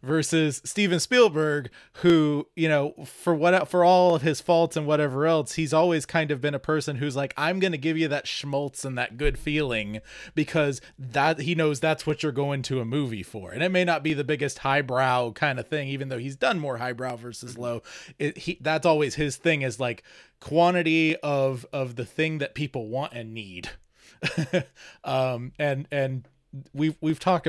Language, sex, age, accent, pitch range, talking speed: English, male, 20-39, American, 130-155 Hz, 200 wpm